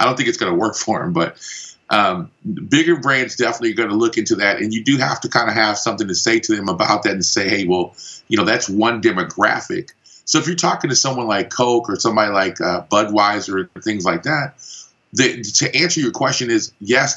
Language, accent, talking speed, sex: English, American, 235 wpm, male